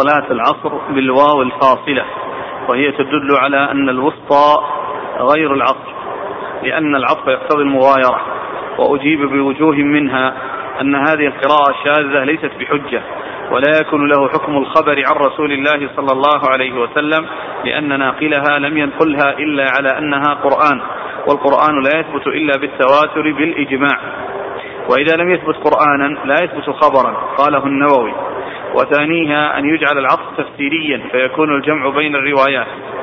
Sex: male